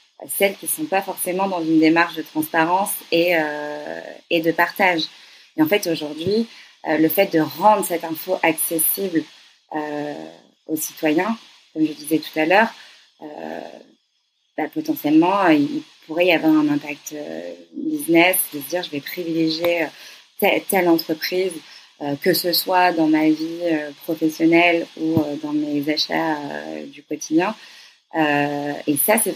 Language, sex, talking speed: French, female, 150 wpm